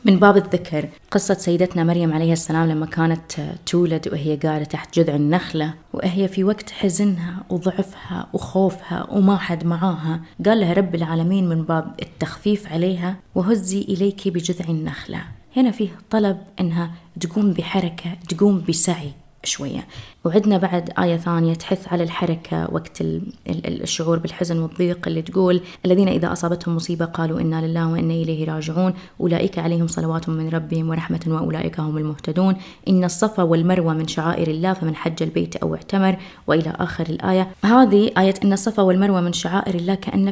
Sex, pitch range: female, 165-195 Hz